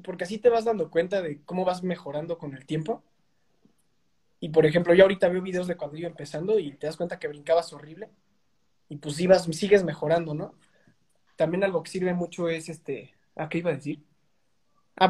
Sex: male